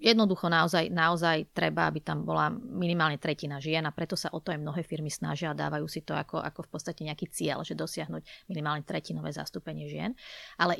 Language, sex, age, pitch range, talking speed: Slovak, female, 30-49, 160-185 Hz, 200 wpm